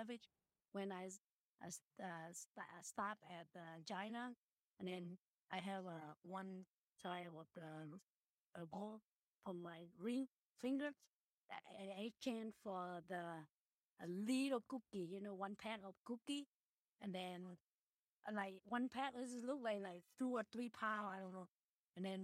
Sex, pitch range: female, 190-240 Hz